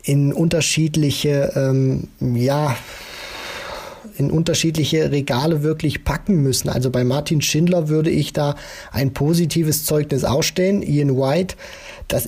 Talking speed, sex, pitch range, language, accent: 115 wpm, male, 125-150 Hz, German, German